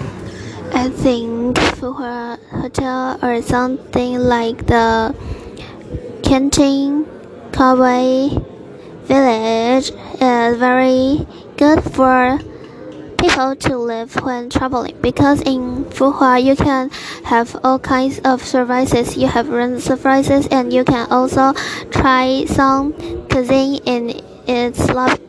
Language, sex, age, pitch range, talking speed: English, female, 10-29, 245-270 Hz, 105 wpm